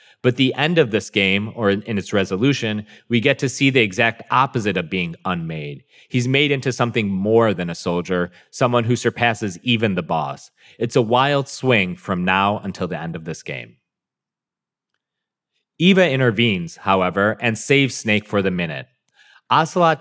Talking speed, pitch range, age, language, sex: 170 wpm, 95-130 Hz, 30-49, English, male